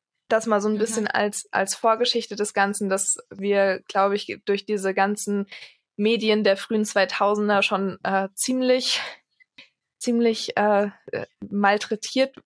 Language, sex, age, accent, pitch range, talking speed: German, female, 20-39, German, 195-215 Hz, 130 wpm